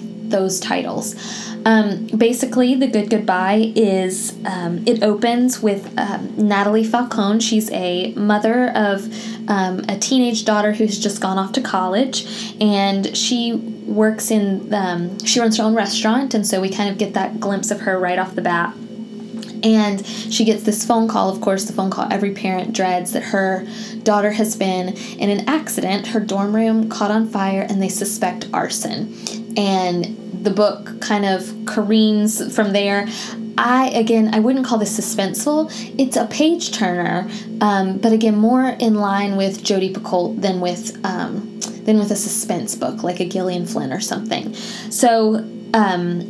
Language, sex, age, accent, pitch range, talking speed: English, female, 10-29, American, 195-220 Hz, 165 wpm